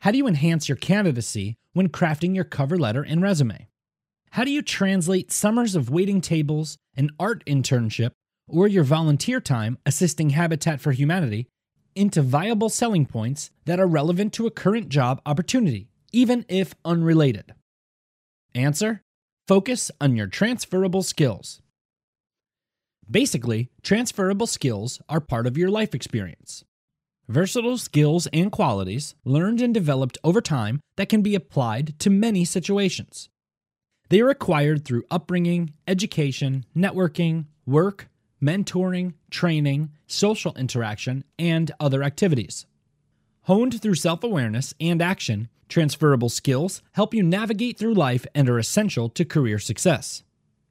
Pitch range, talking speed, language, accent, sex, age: 140-190 Hz, 130 wpm, English, American, male, 30-49